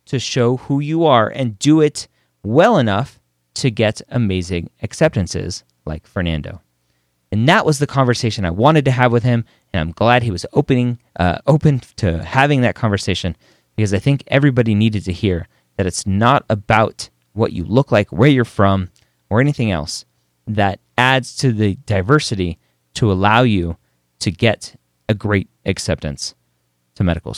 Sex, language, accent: male, English, American